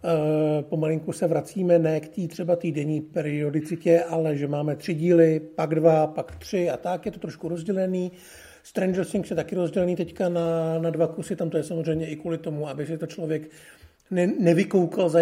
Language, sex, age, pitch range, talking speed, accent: Czech, male, 50-69, 155-185 Hz, 195 wpm, native